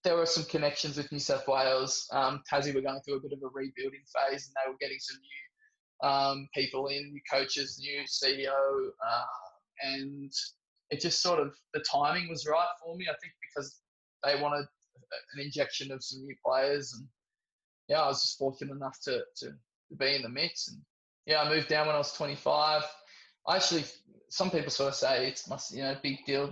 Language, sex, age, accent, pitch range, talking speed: English, male, 20-39, Australian, 140-165 Hz, 205 wpm